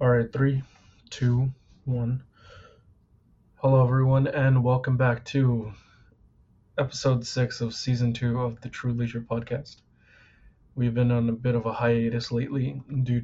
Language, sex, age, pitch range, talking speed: English, male, 20-39, 115-130 Hz, 140 wpm